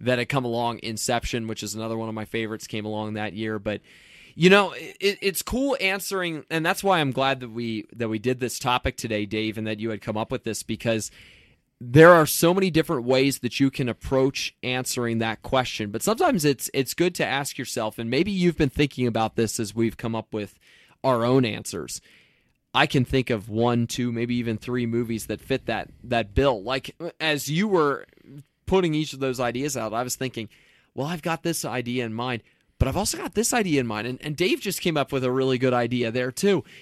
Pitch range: 115-145 Hz